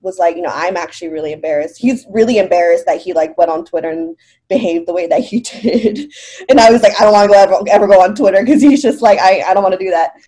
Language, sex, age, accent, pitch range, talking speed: English, female, 20-39, American, 175-245 Hz, 280 wpm